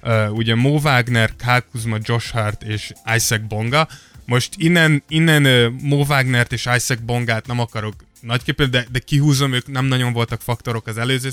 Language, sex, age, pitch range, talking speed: Hungarian, male, 20-39, 115-130 Hz, 175 wpm